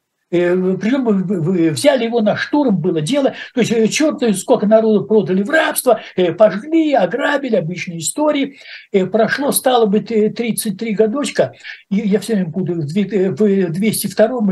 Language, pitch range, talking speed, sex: Russian, 165-225 Hz, 120 wpm, male